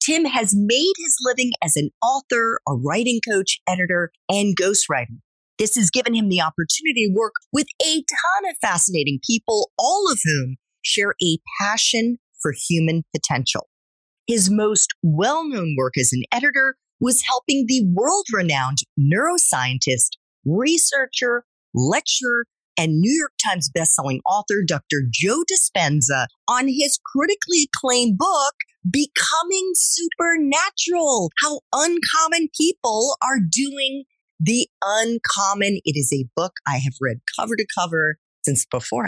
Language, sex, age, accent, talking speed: English, female, 40-59, American, 130 wpm